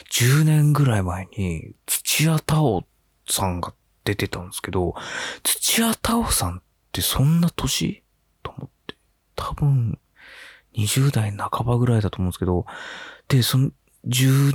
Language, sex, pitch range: Japanese, male, 90-135 Hz